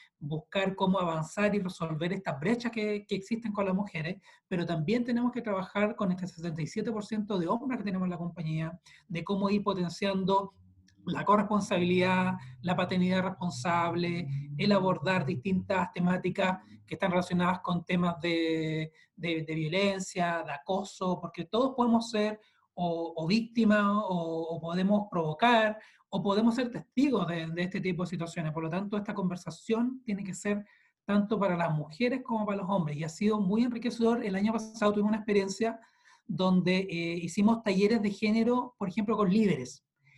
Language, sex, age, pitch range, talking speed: Spanish, male, 30-49, 175-215 Hz, 165 wpm